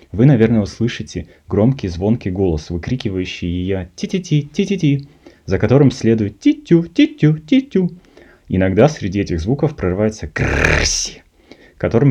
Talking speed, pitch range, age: 125 wpm, 90-120 Hz, 20-39